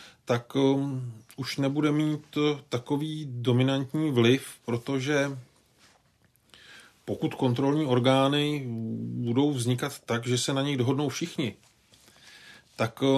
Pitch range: 115-135 Hz